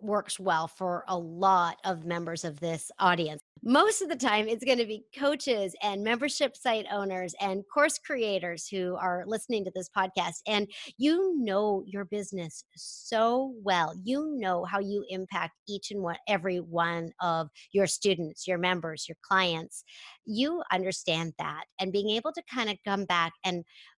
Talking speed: 170 wpm